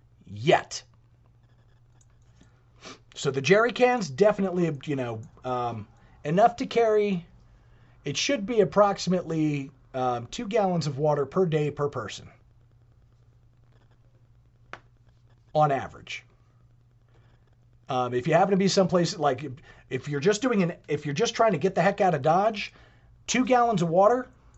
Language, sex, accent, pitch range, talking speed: English, male, American, 120-190 Hz, 135 wpm